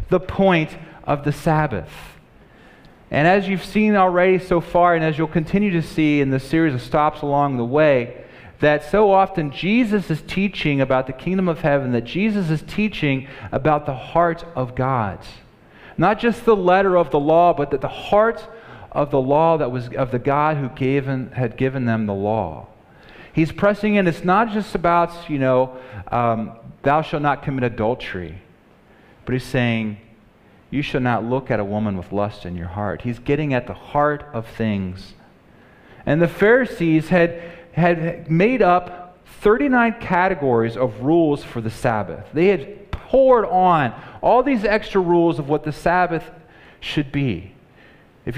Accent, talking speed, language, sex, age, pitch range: American, 170 wpm, English, male, 40-59, 130-180 Hz